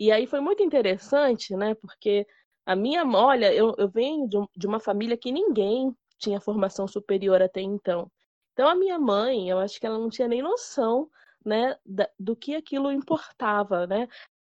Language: Portuguese